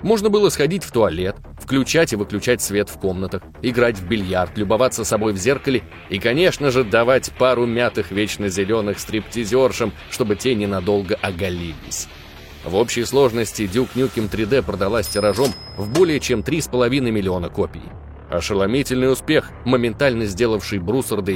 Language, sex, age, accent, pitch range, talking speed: Russian, male, 20-39, native, 100-130 Hz, 140 wpm